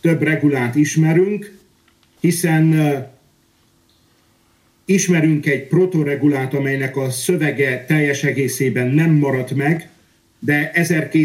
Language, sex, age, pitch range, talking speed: Hungarian, male, 50-69, 135-170 Hz, 85 wpm